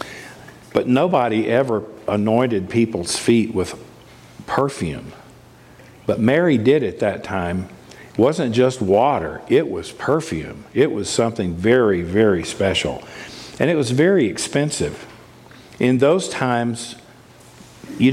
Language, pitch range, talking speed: English, 105-125 Hz, 120 wpm